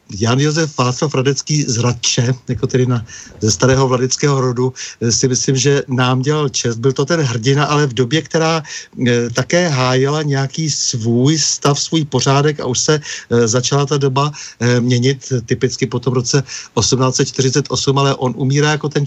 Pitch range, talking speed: 125-145 Hz, 170 wpm